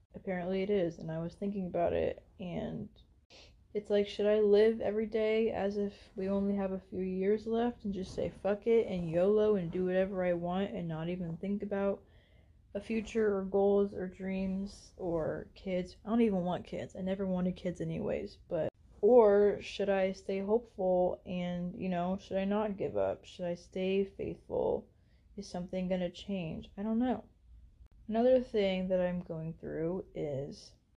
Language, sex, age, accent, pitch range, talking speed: English, female, 20-39, American, 180-210 Hz, 180 wpm